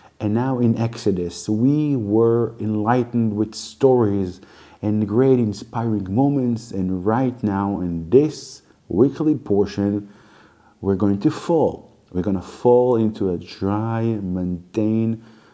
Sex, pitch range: male, 95-120 Hz